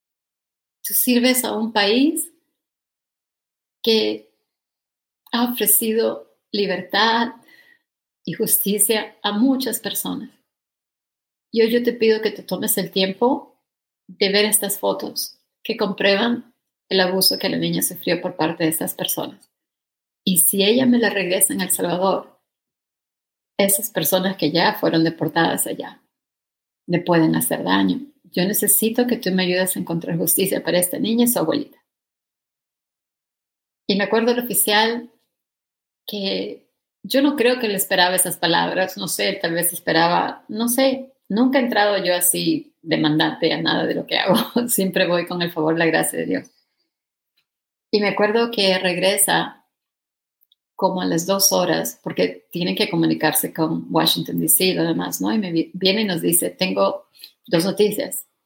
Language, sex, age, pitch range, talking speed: Spanish, female, 40-59, 180-230 Hz, 150 wpm